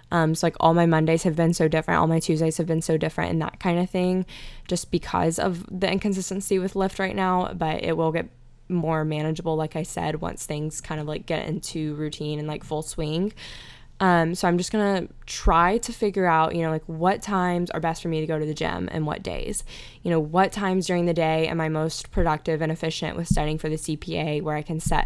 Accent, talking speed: American, 240 wpm